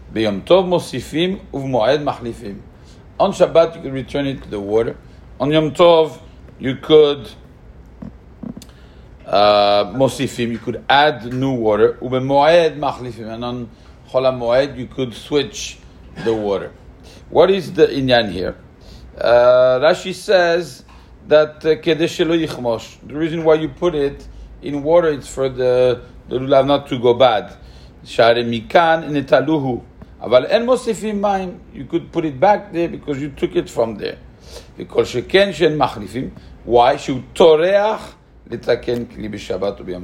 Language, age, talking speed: English, 50-69, 115 wpm